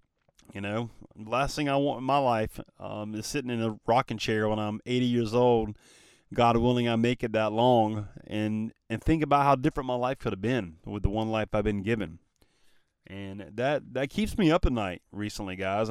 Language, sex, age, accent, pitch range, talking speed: English, male, 30-49, American, 105-140 Hz, 215 wpm